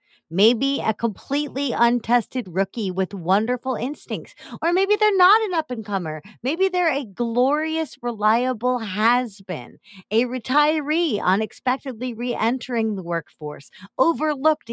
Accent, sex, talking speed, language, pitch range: American, female, 110 wpm, English, 190-275 Hz